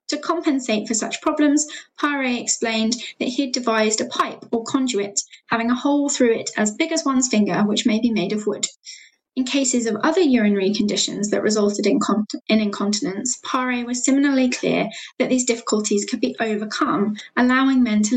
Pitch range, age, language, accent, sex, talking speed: 215-270 Hz, 10-29, English, British, female, 180 wpm